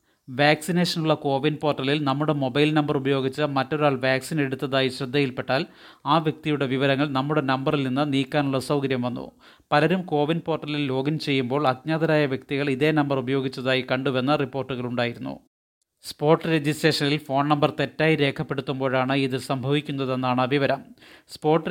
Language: Malayalam